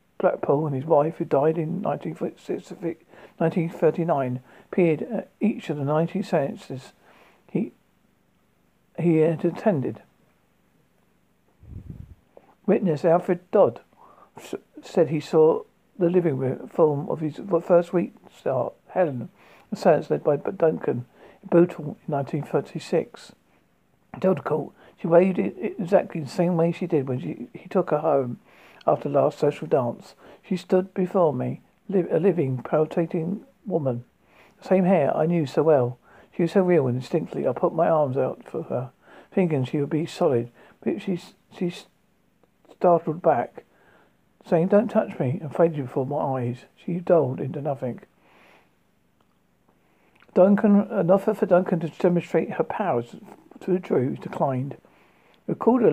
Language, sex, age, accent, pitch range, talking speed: English, male, 60-79, British, 150-190 Hz, 140 wpm